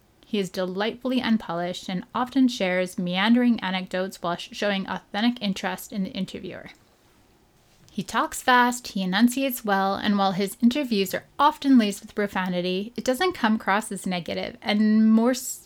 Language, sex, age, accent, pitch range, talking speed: English, female, 10-29, American, 195-240 Hz, 150 wpm